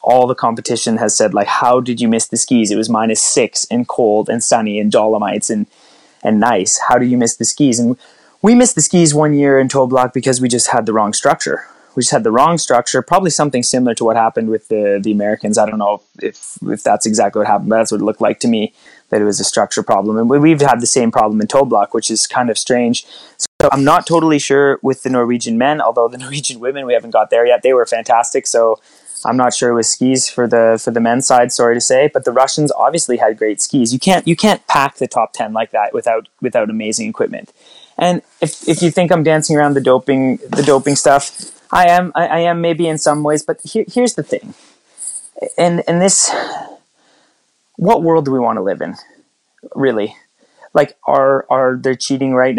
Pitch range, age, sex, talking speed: 115-155 Hz, 20-39, male, 230 wpm